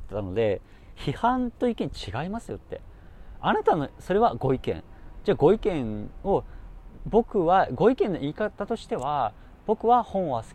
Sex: male